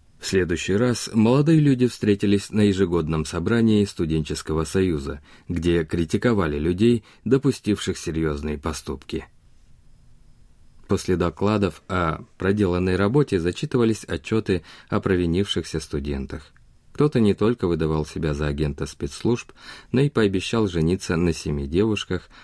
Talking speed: 110 wpm